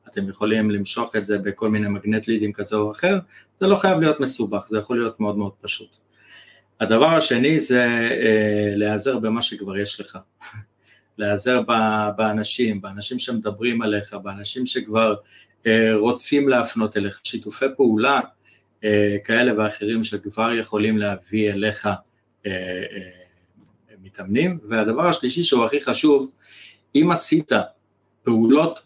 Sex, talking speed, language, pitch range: male, 135 wpm, Hebrew, 105-130 Hz